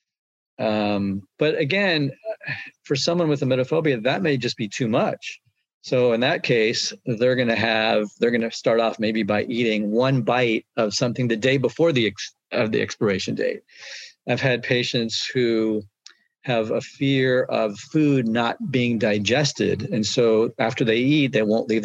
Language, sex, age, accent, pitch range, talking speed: English, male, 40-59, American, 115-145 Hz, 170 wpm